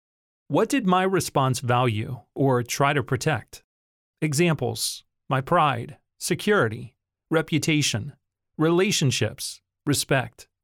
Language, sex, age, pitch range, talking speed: English, male, 40-59, 120-160 Hz, 90 wpm